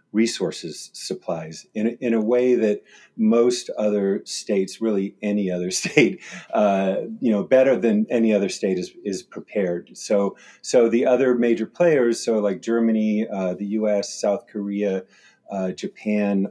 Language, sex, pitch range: English, male, 95-110 Hz